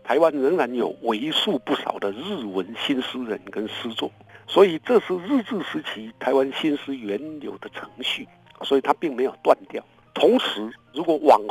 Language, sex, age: Chinese, male, 60-79